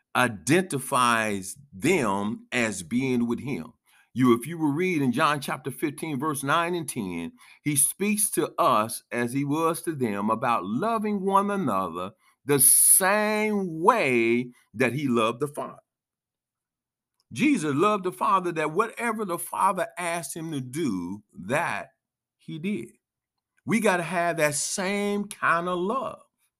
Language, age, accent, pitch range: English, 50-69, American, 135-210 Hz